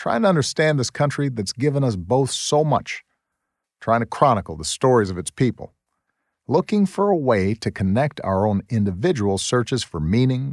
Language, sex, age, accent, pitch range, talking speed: English, male, 50-69, American, 95-135 Hz, 175 wpm